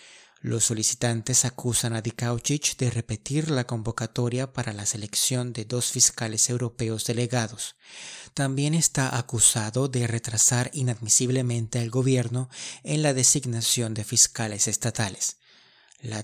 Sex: male